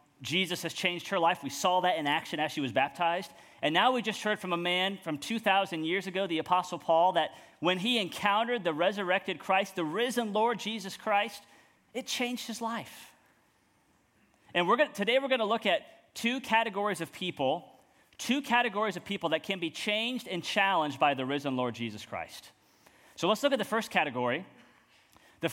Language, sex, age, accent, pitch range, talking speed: English, male, 30-49, American, 160-220 Hz, 190 wpm